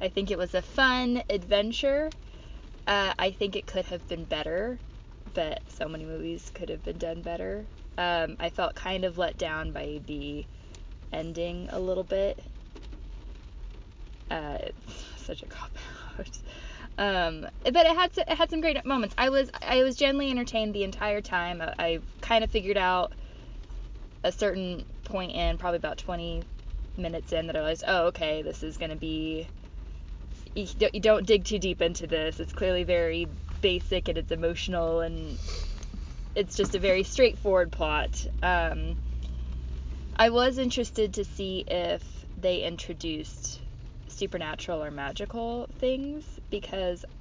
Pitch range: 145-200 Hz